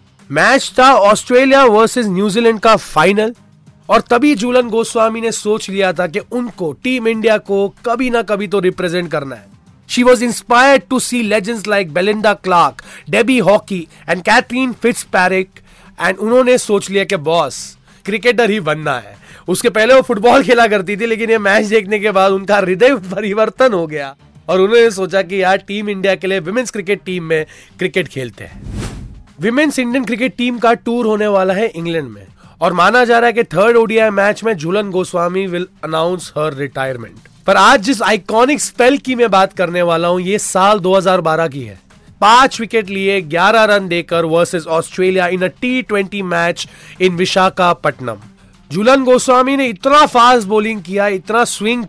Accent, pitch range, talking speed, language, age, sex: native, 180-235 Hz, 150 wpm, Hindi, 30-49, male